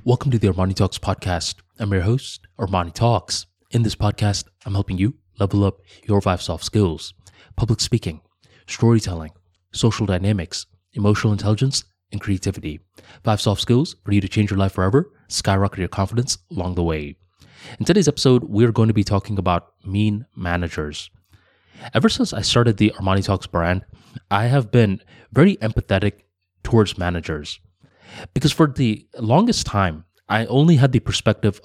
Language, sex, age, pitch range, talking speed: English, male, 20-39, 90-120 Hz, 160 wpm